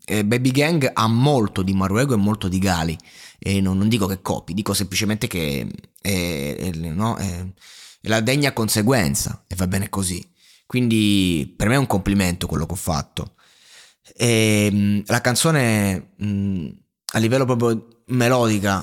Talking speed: 145 wpm